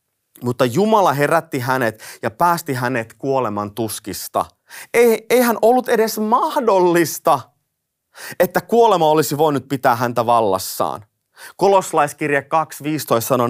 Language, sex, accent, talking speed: Finnish, male, native, 100 wpm